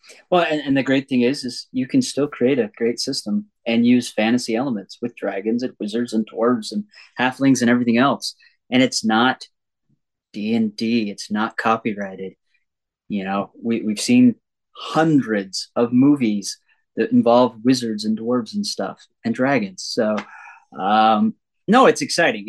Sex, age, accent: male, 30-49, American